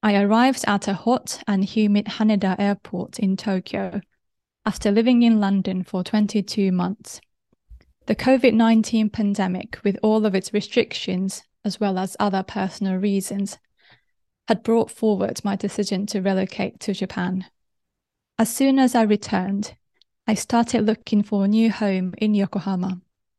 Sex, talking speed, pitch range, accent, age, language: female, 140 wpm, 195-220 Hz, British, 20-39, English